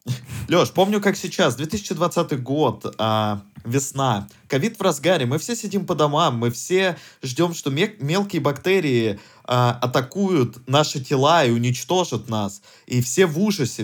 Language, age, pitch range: Russian, 20-39, 120-190 Hz